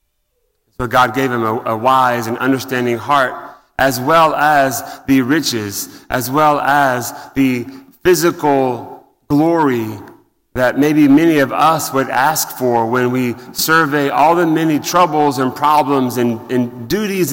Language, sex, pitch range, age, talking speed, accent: English, male, 120-140 Hz, 30-49, 140 wpm, American